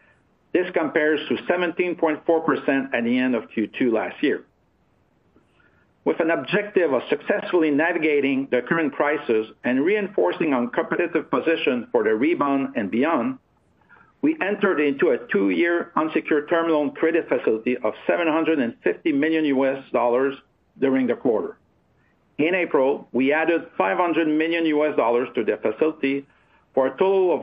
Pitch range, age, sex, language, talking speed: 135-175 Hz, 50-69, male, English, 140 wpm